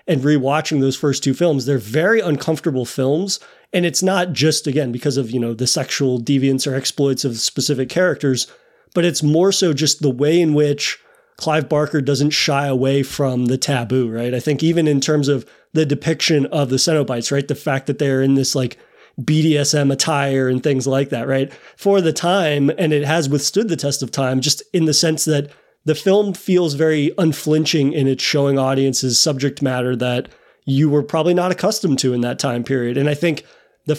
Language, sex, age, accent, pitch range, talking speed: English, male, 30-49, American, 135-160 Hz, 200 wpm